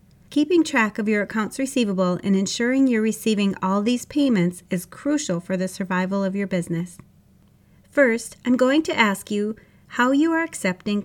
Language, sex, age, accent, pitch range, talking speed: English, female, 40-59, American, 185-245 Hz, 170 wpm